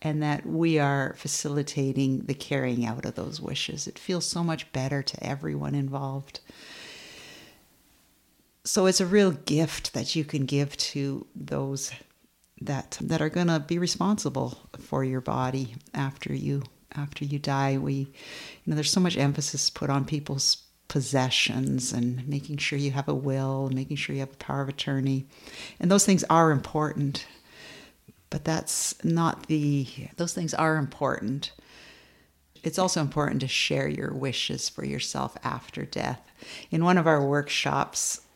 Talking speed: 155 wpm